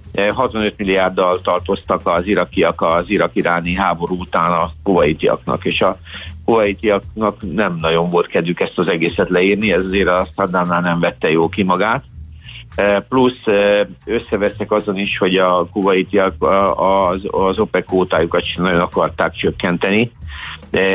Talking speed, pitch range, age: 130 wpm, 90-105 Hz, 50-69